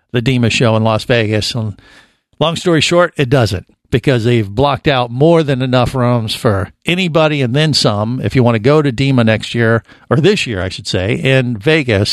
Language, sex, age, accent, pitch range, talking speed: English, male, 50-69, American, 110-145 Hz, 205 wpm